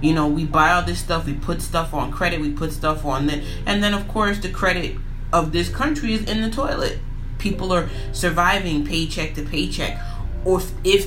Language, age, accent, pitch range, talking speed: English, 30-49, American, 140-175 Hz, 205 wpm